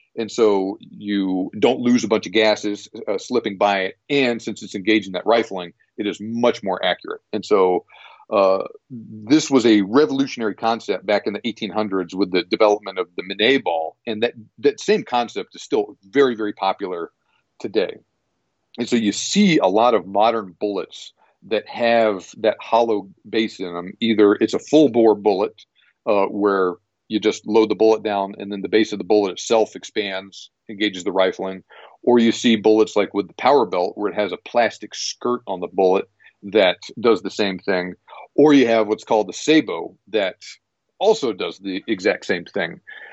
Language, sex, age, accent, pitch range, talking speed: English, male, 40-59, American, 100-130 Hz, 185 wpm